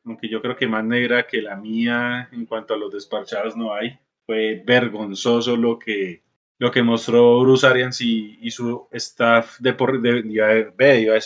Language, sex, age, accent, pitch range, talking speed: Spanish, male, 20-39, Colombian, 115-150 Hz, 165 wpm